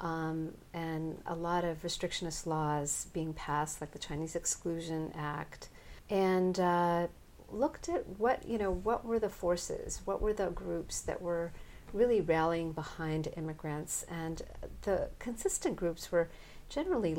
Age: 50-69